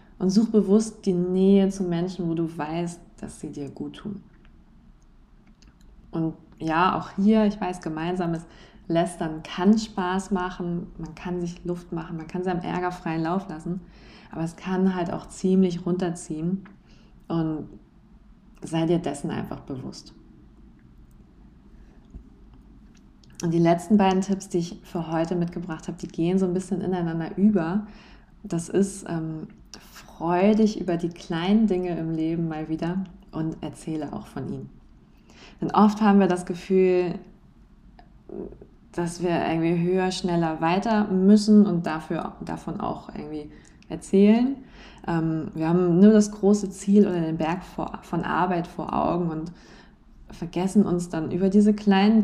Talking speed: 145 wpm